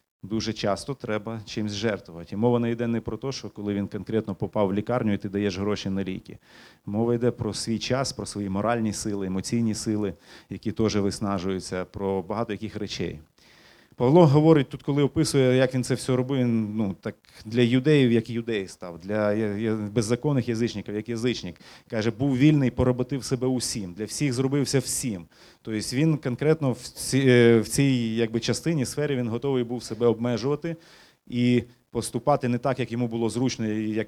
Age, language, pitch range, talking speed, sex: 30-49, Ukrainian, 110-135 Hz, 170 wpm, male